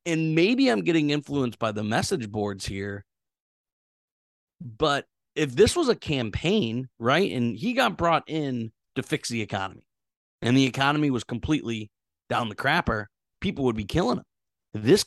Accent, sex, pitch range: American, male, 110-165 Hz